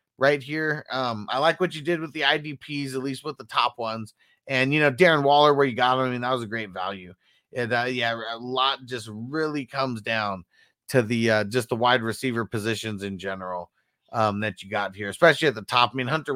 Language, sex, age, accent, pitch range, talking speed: English, male, 30-49, American, 110-145 Hz, 235 wpm